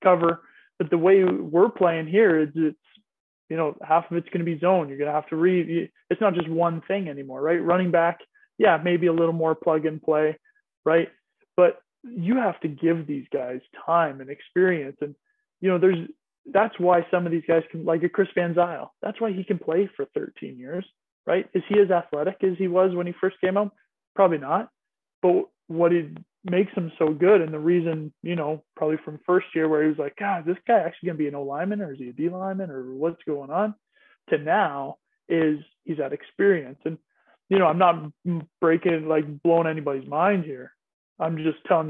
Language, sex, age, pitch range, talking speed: English, male, 20-39, 155-195 Hz, 215 wpm